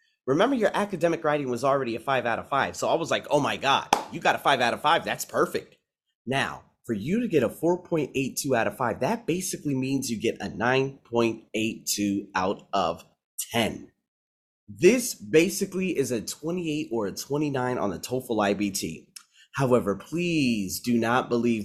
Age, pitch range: 30-49, 115-175 Hz